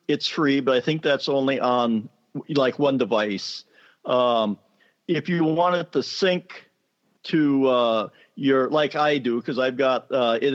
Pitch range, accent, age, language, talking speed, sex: 120-145 Hz, American, 50-69, English, 165 wpm, male